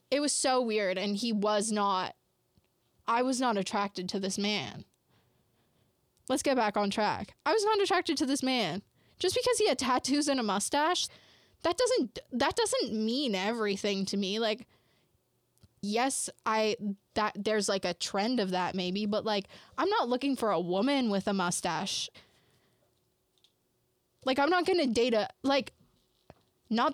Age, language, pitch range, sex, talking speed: 10-29, English, 200-265 Hz, female, 165 wpm